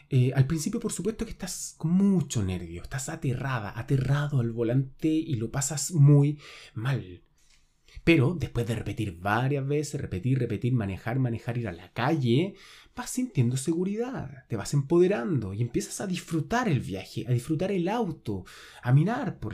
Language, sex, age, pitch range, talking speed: Spanish, male, 30-49, 120-175 Hz, 165 wpm